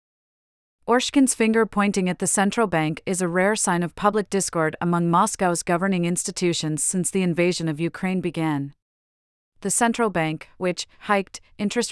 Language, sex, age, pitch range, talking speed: English, female, 40-59, 165-200 Hz, 150 wpm